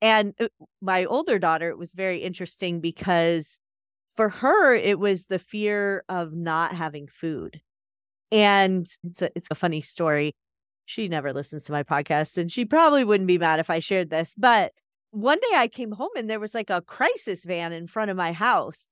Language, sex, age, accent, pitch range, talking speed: English, female, 30-49, American, 170-220 Hz, 185 wpm